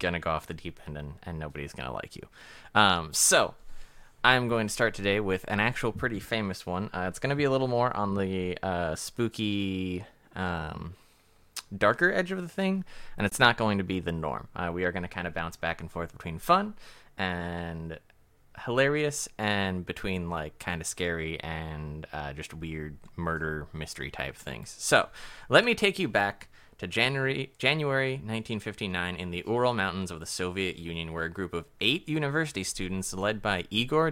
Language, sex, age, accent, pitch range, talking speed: English, male, 20-39, American, 85-115 Hz, 190 wpm